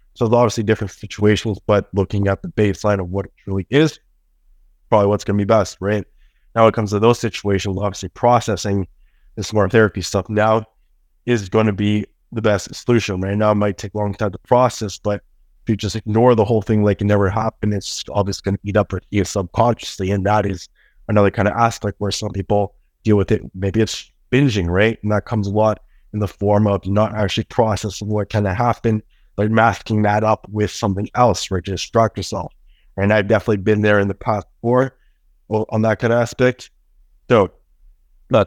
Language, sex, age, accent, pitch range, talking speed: English, male, 20-39, American, 100-115 Hz, 210 wpm